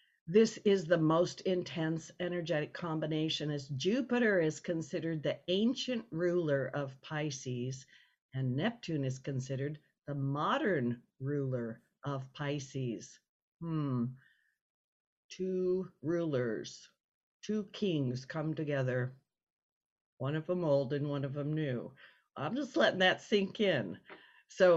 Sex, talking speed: female, 115 wpm